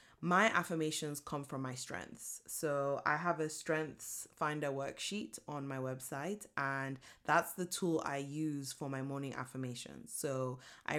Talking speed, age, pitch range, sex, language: 155 wpm, 20-39, 140-170 Hz, female, English